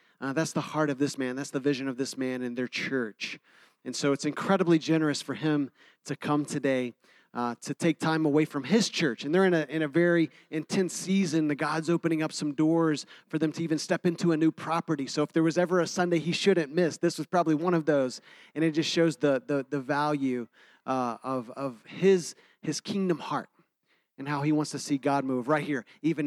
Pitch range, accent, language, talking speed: 135-165 Hz, American, English, 230 wpm